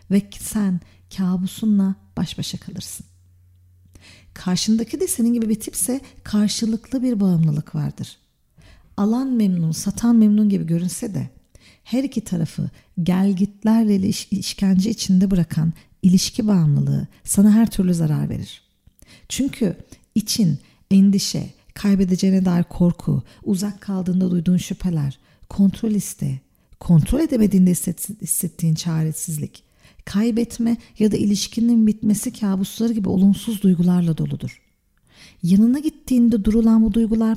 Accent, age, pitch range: native, 50-69, 175-220 Hz